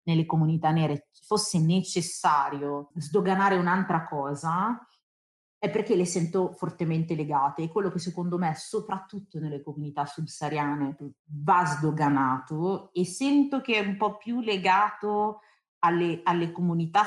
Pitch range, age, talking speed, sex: 155-200 Hz, 40-59, 125 wpm, female